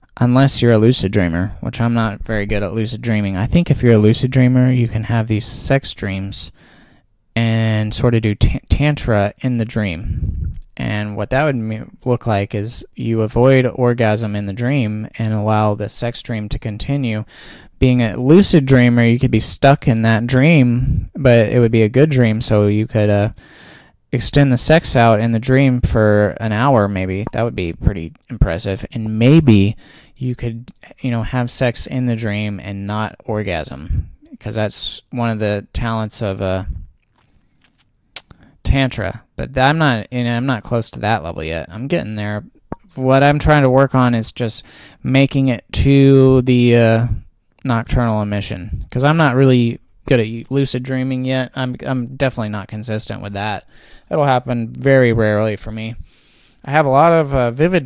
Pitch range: 105-130 Hz